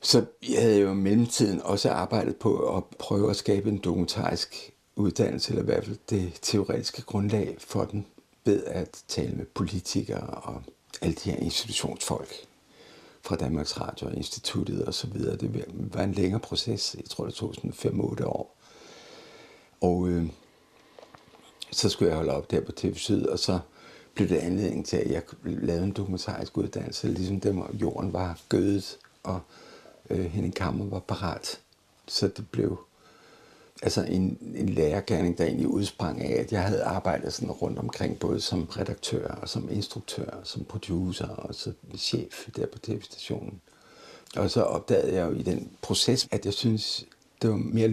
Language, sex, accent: Danish, male, native